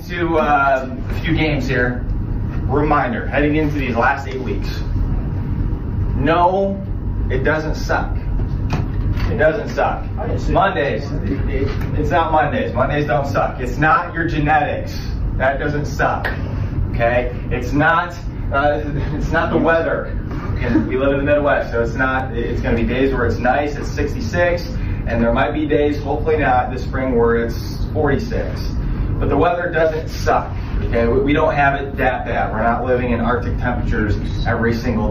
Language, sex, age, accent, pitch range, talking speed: English, male, 30-49, American, 105-140 Hz, 160 wpm